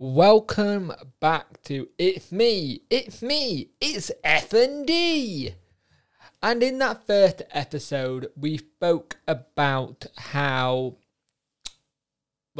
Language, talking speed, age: English, 85 wpm, 20-39